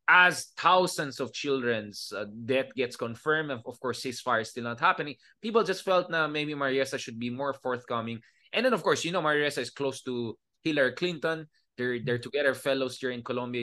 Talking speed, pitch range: 190 wpm, 125-165 Hz